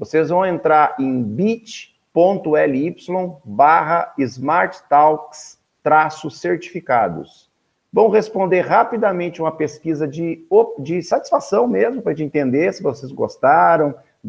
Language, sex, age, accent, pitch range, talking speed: Portuguese, male, 50-69, Brazilian, 150-190 Hz, 90 wpm